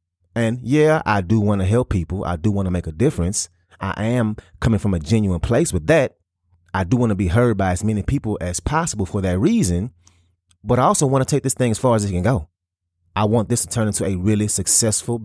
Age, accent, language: 30-49, American, English